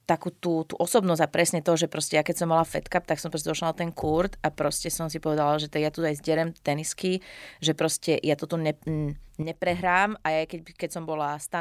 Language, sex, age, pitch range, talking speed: Slovak, female, 30-49, 155-175 Hz, 240 wpm